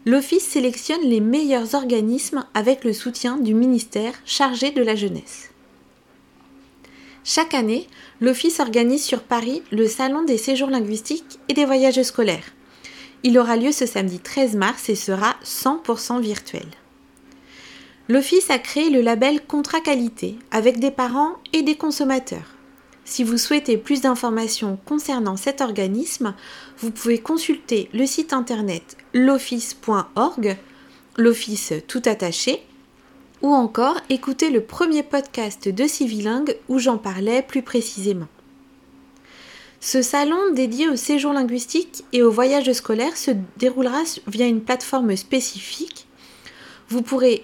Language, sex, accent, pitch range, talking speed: French, female, French, 225-280 Hz, 130 wpm